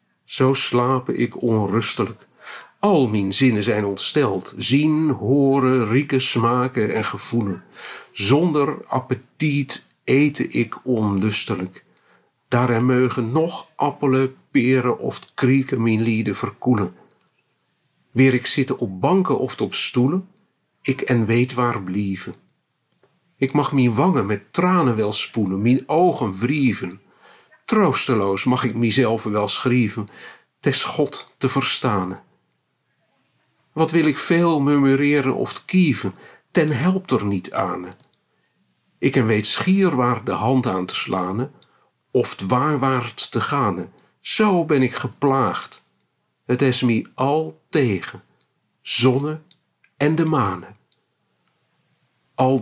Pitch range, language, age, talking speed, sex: 115-140 Hz, Dutch, 50-69, 115 wpm, male